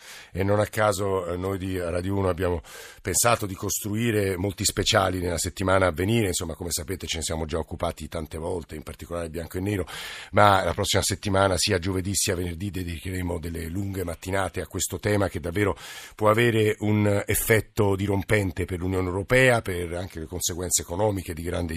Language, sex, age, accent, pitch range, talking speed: Italian, male, 50-69, native, 95-120 Hz, 180 wpm